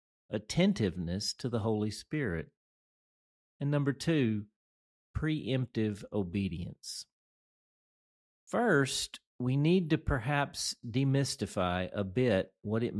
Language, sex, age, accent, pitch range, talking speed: English, male, 50-69, American, 100-135 Hz, 90 wpm